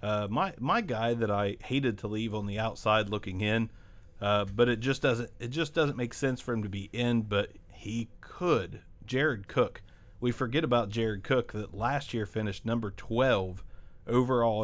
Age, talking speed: 40-59, 190 wpm